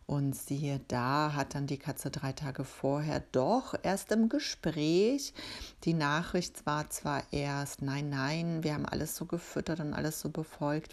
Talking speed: 165 wpm